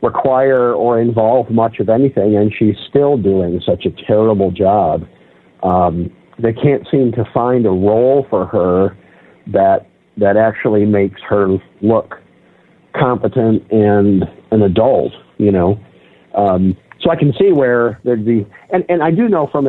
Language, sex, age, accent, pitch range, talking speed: English, male, 50-69, American, 105-135 Hz, 150 wpm